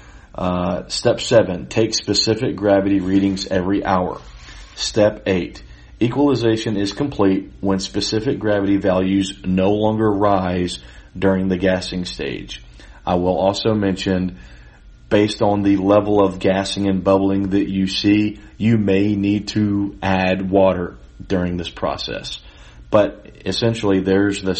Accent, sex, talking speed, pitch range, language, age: American, male, 130 wpm, 90-105 Hz, English, 40-59